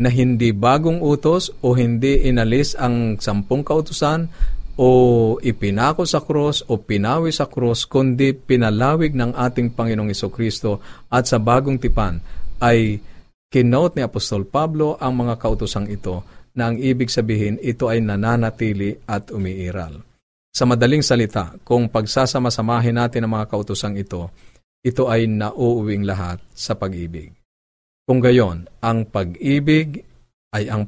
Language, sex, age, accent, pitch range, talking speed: Filipino, male, 50-69, native, 100-125 Hz, 130 wpm